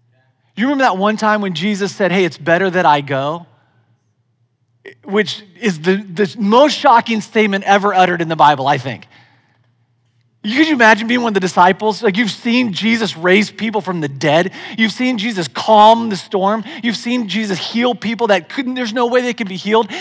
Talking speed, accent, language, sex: 195 wpm, American, English, male